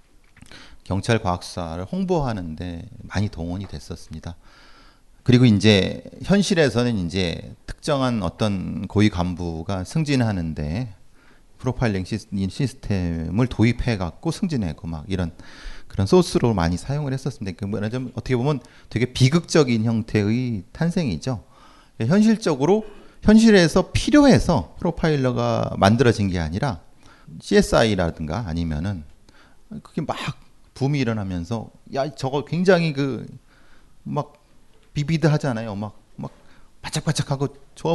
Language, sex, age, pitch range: Korean, male, 40-59, 90-140 Hz